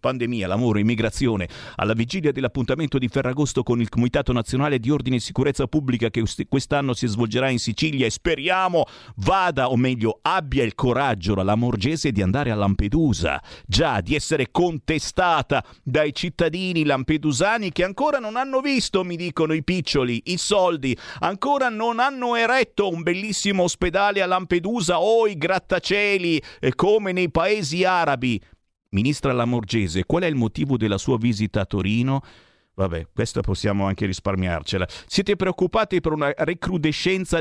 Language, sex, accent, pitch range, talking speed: Italian, male, native, 120-180 Hz, 150 wpm